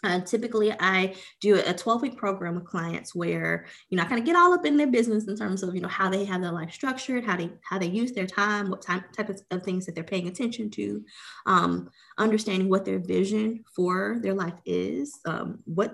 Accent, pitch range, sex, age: American, 160-210 Hz, female, 20-39